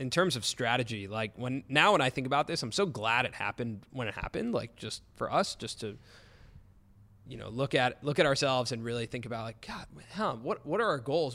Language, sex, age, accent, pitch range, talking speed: English, male, 20-39, American, 115-135 Hz, 240 wpm